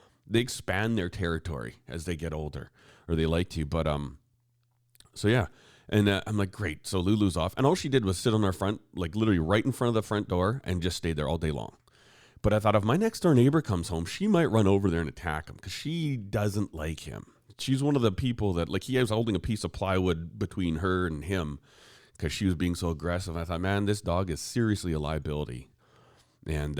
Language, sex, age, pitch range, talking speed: English, male, 30-49, 85-115 Hz, 240 wpm